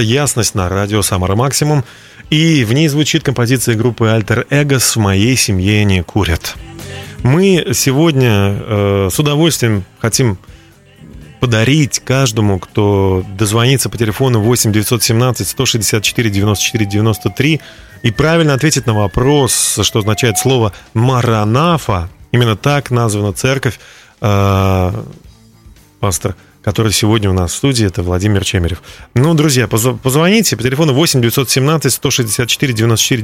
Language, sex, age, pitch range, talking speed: Russian, male, 30-49, 100-135 Hz, 120 wpm